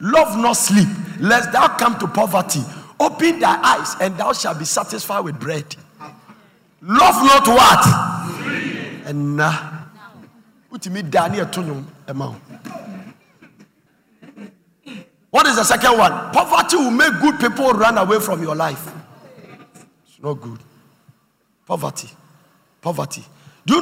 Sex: male